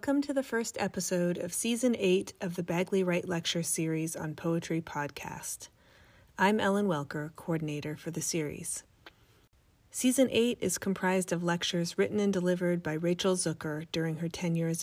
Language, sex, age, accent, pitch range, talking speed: English, female, 30-49, American, 160-190 Hz, 160 wpm